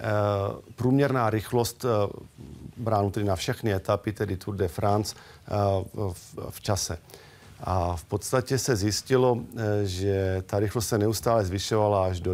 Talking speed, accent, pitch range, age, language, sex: 130 wpm, native, 95-115 Hz, 40-59, Czech, male